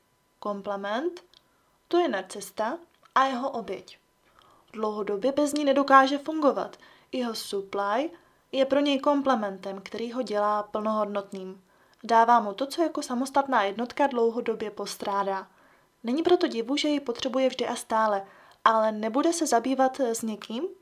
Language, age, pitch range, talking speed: Czech, 20-39, 210-270 Hz, 135 wpm